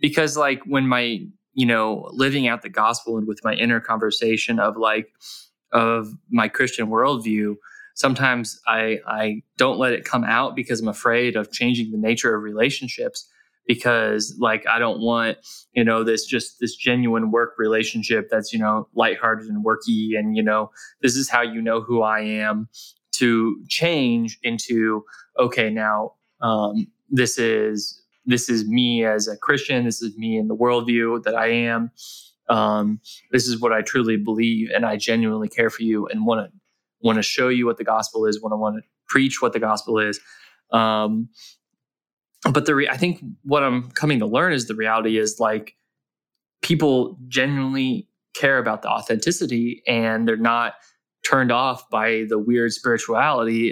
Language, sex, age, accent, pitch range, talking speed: English, male, 20-39, American, 110-125 Hz, 175 wpm